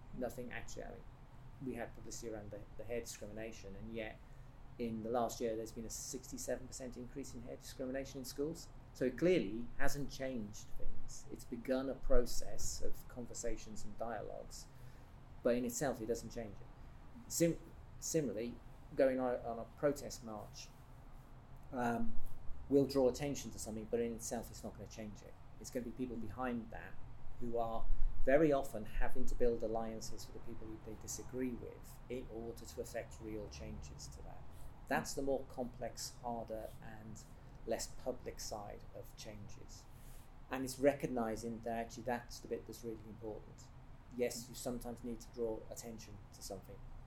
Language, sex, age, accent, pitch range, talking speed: English, male, 40-59, British, 110-130 Hz, 165 wpm